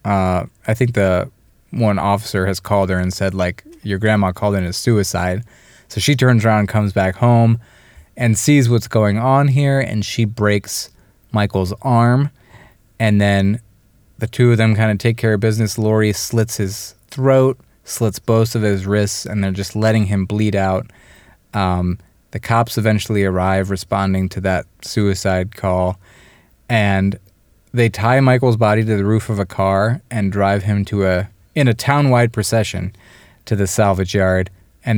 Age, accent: 20-39, American